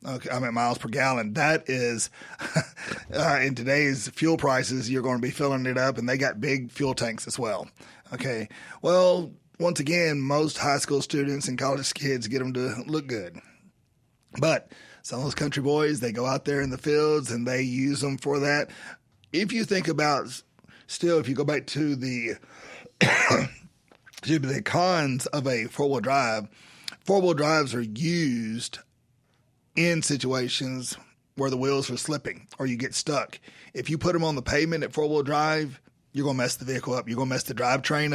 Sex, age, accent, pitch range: male, 30-49, American, 125-150 Hz